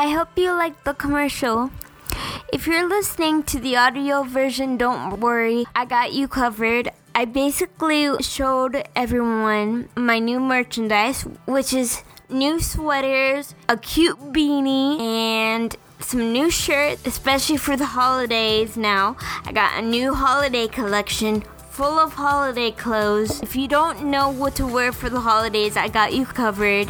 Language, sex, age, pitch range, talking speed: English, female, 10-29, 230-285 Hz, 145 wpm